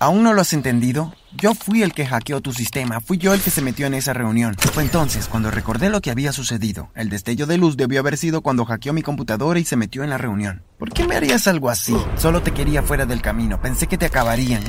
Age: 30-49